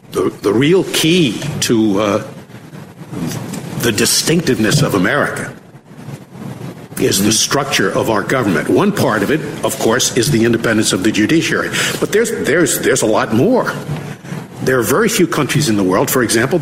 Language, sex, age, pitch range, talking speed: English, male, 60-79, 125-215 Hz, 160 wpm